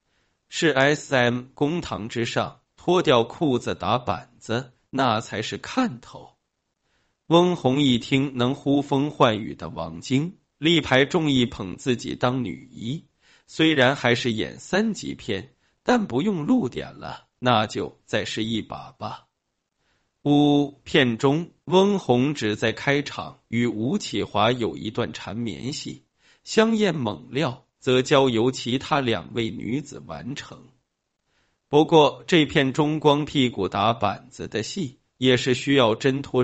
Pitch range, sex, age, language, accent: 115-150 Hz, male, 20-39, Chinese, native